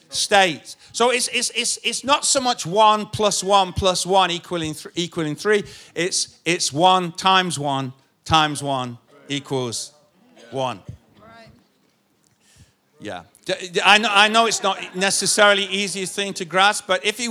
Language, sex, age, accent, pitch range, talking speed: English, male, 50-69, British, 160-205 Hz, 145 wpm